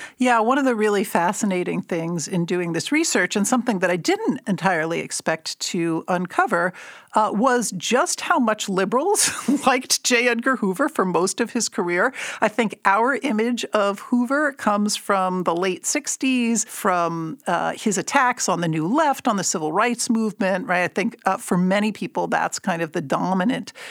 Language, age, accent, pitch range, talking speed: English, 50-69, American, 185-245 Hz, 180 wpm